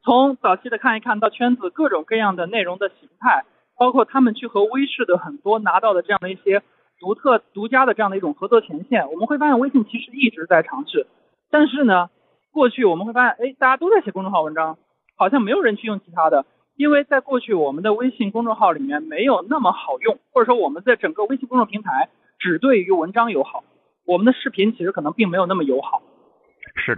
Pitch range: 190-265 Hz